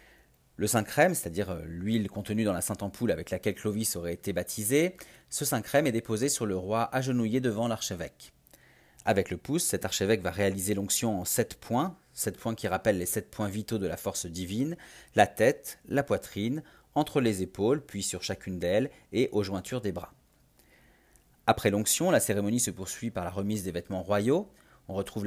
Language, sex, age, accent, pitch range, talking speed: French, male, 40-59, French, 95-115 Hz, 190 wpm